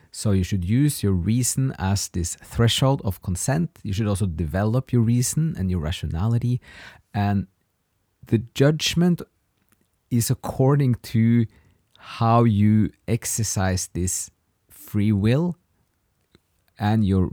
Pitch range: 95-125 Hz